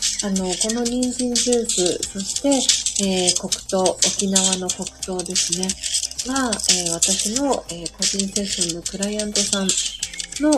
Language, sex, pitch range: Japanese, female, 175-210 Hz